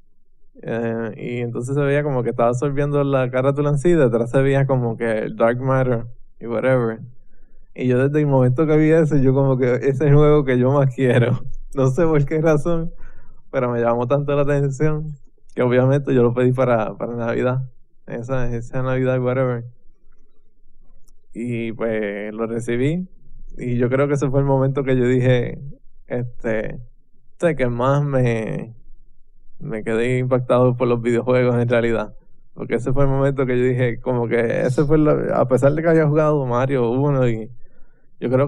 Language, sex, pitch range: English, male, 120-140 Hz